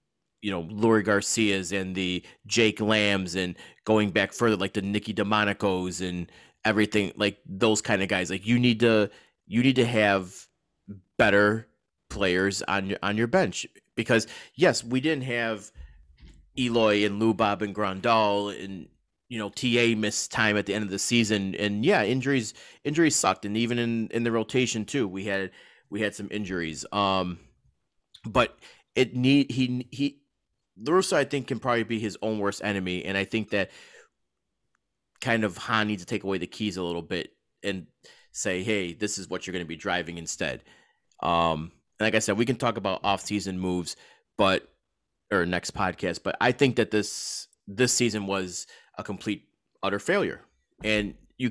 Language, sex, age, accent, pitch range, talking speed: English, male, 30-49, American, 95-115 Hz, 180 wpm